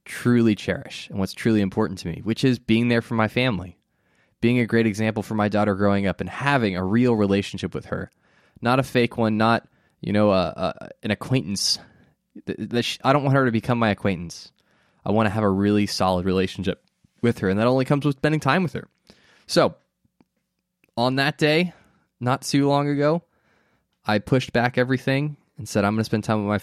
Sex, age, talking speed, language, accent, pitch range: male, 20-39, 205 wpm, English, American, 105-135 Hz